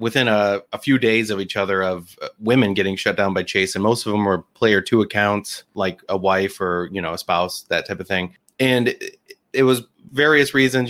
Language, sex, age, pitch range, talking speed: English, male, 30-49, 100-125 Hz, 225 wpm